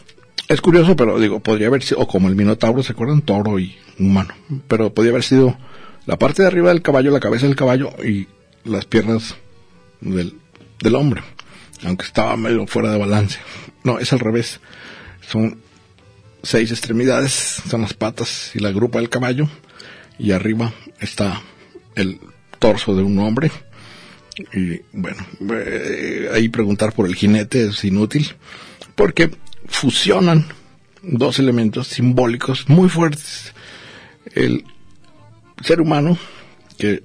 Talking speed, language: 140 wpm, Spanish